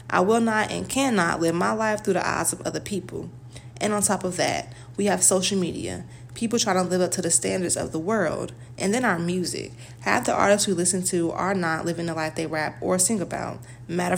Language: English